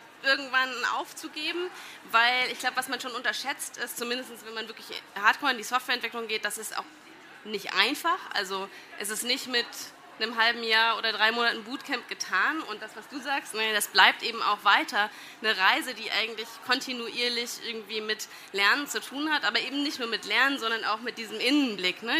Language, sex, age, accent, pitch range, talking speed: German, female, 20-39, German, 215-250 Hz, 190 wpm